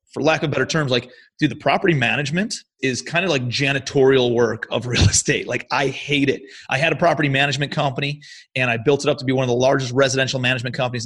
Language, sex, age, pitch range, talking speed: English, male, 30-49, 125-155 Hz, 235 wpm